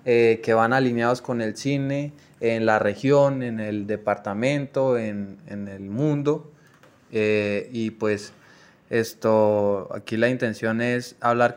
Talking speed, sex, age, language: 135 wpm, male, 20-39, English